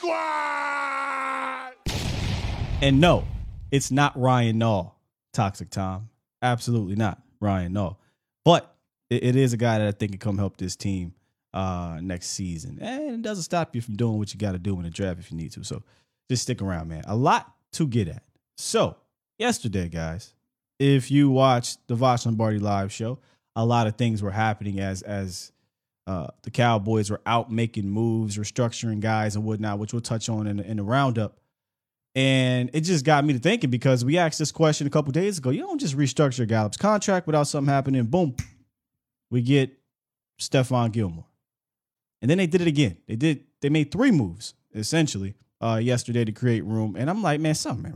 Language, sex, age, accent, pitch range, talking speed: English, male, 20-39, American, 105-145 Hz, 185 wpm